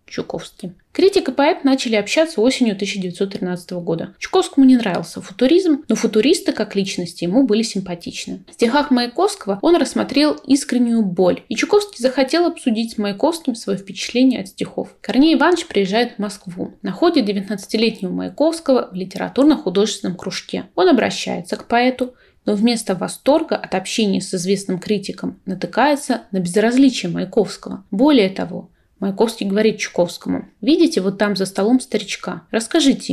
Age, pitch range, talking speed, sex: 20-39, 195-270 Hz, 140 wpm, female